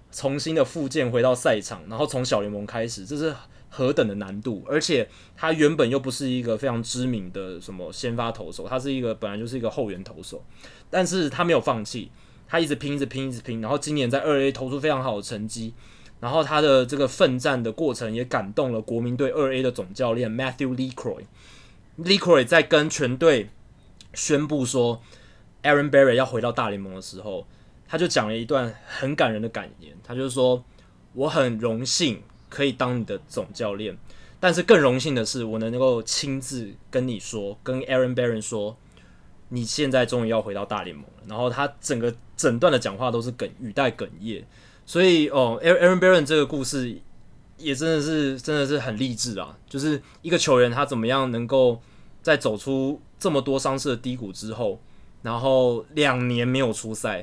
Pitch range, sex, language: 115-140 Hz, male, Chinese